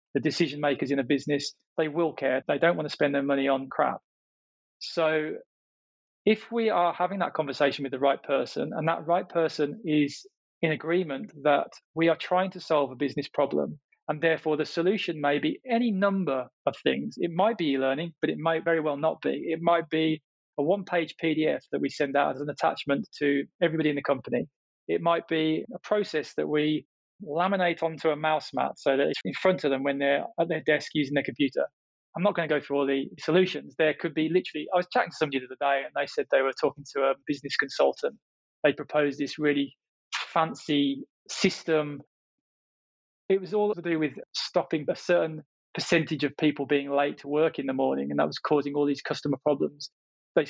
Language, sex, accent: English, male, British